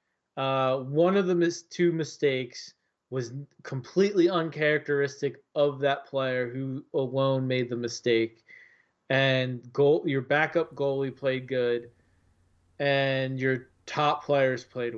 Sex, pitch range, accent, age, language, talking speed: male, 120-150 Hz, American, 20-39, English, 120 wpm